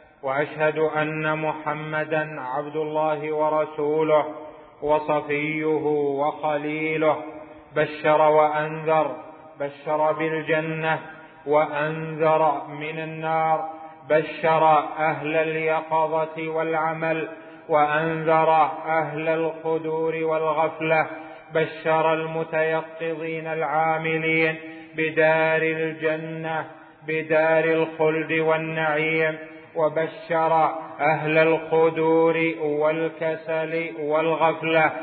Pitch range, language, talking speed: 155-160 Hz, Arabic, 60 wpm